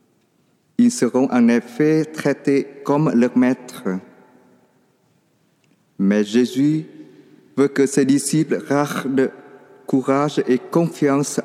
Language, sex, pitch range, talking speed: French, male, 125-160 Hz, 95 wpm